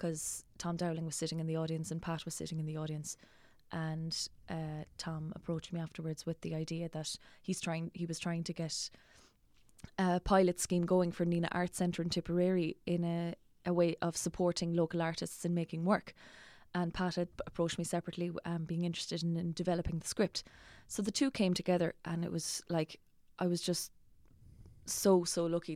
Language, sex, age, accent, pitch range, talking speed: English, female, 20-39, Irish, 165-185 Hz, 190 wpm